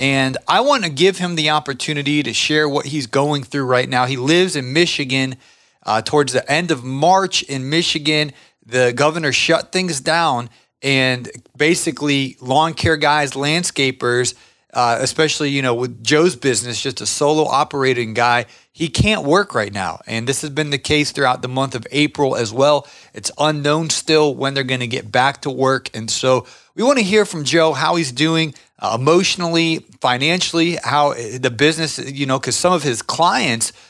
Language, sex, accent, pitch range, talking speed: English, male, American, 130-155 Hz, 185 wpm